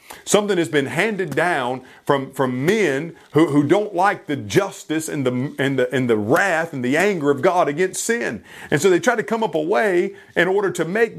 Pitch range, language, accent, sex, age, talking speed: 140-200 Hz, English, American, male, 40-59, 220 wpm